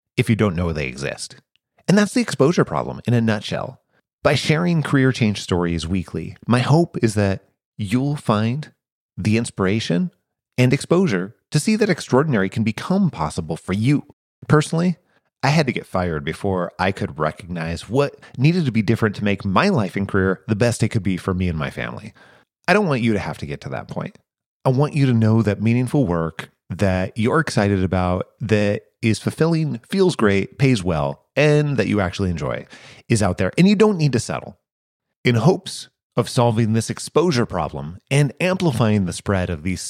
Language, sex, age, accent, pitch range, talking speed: English, male, 30-49, American, 95-135 Hz, 190 wpm